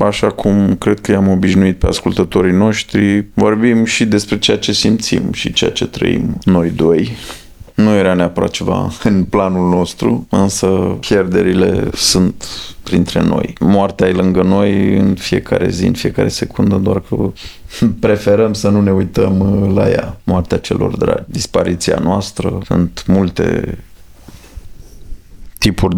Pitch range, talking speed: 90-100 Hz, 140 wpm